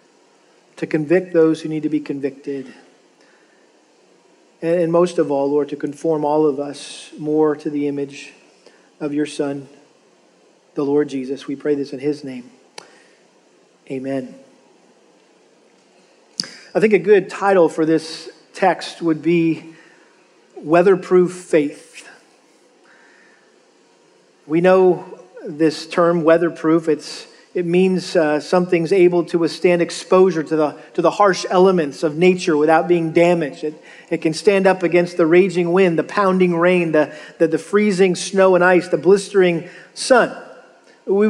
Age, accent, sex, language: 40-59, American, male, English